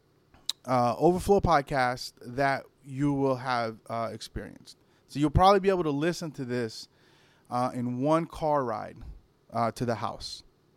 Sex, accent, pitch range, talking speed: male, American, 125-160 Hz, 150 wpm